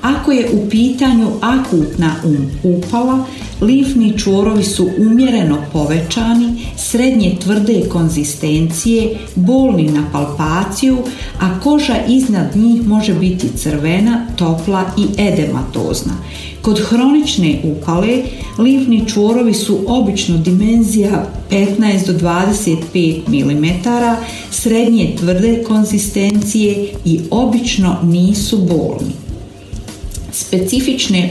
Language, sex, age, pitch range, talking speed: Croatian, female, 50-69, 165-230 Hz, 90 wpm